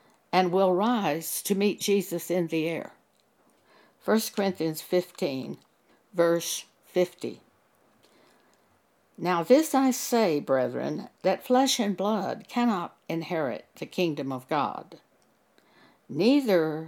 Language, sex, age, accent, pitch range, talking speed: English, female, 60-79, American, 175-245 Hz, 105 wpm